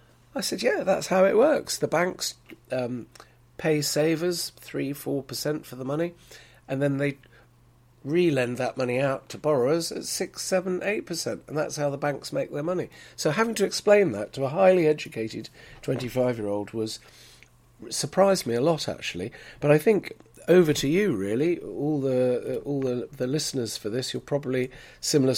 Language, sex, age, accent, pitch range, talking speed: English, male, 40-59, British, 120-150 Hz, 175 wpm